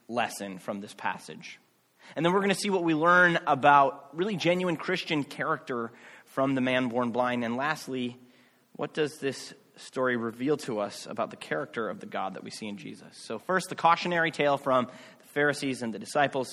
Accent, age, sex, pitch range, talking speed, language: American, 30-49, male, 115-160 Hz, 195 wpm, English